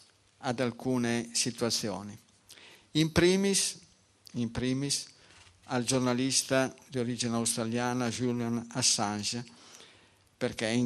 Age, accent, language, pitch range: 50-69, native, Italian, 110-135 Hz